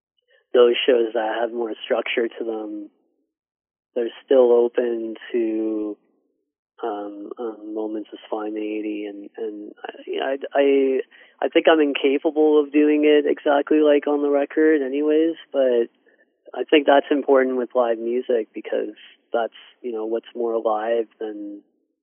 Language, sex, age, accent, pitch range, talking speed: English, male, 30-49, American, 110-150 Hz, 135 wpm